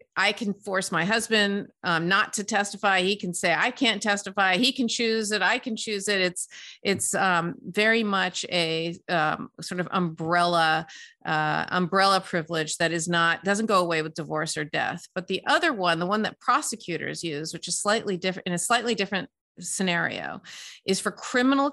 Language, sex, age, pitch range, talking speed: English, female, 40-59, 170-215 Hz, 185 wpm